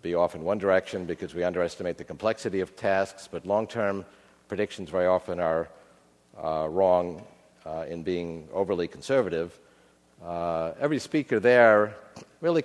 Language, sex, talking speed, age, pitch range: English, male, 140 wpm, 50-69, 90-110 Hz